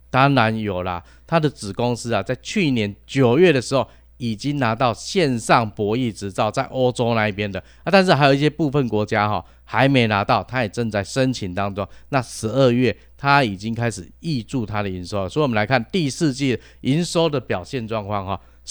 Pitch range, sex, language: 100-140 Hz, male, Chinese